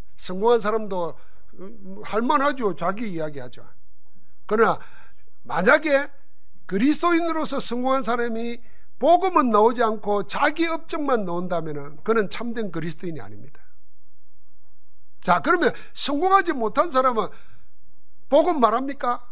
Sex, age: male, 50-69